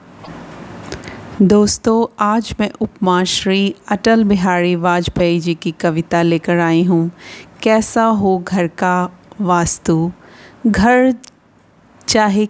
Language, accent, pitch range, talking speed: Hindi, native, 170-210 Hz, 100 wpm